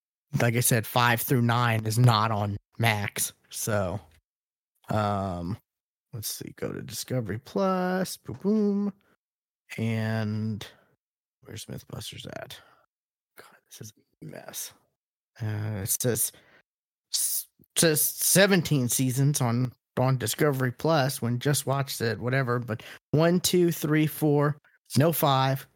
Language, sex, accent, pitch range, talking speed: English, male, American, 120-155 Hz, 120 wpm